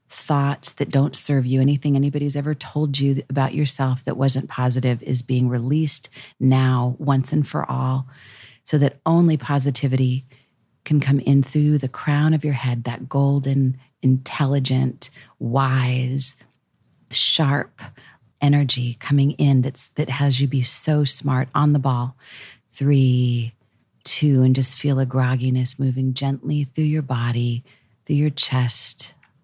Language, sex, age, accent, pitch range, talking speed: English, female, 40-59, American, 125-140 Hz, 140 wpm